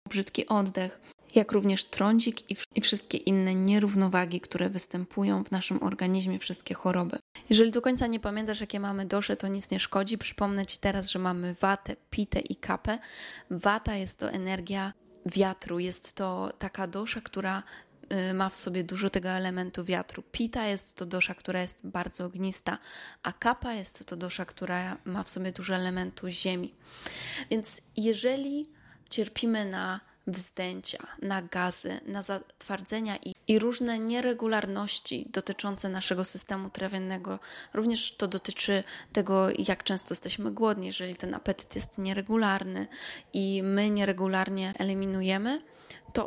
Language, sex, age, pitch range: Polish, female, 20-39, 185-210 Hz